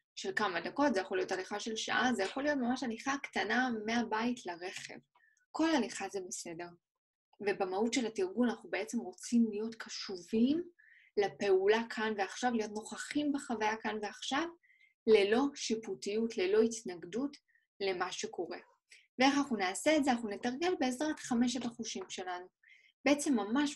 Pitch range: 205-265 Hz